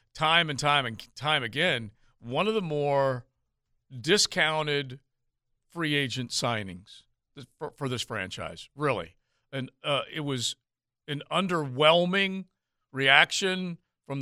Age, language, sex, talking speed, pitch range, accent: 50-69, English, male, 115 wpm, 120-155 Hz, American